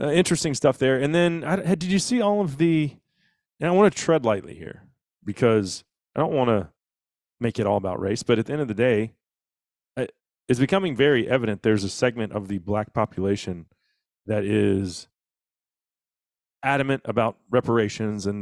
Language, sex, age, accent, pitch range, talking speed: English, male, 30-49, American, 110-160 Hz, 175 wpm